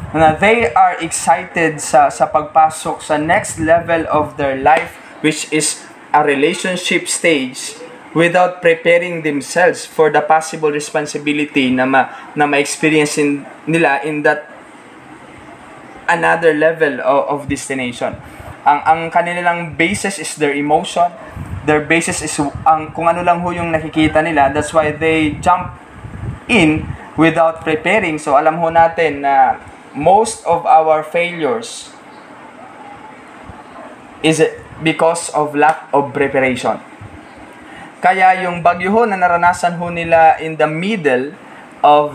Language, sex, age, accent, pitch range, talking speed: Filipino, male, 20-39, native, 150-170 Hz, 125 wpm